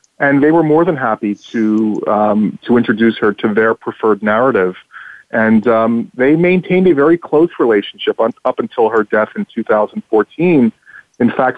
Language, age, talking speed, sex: English, 40-59, 160 wpm, male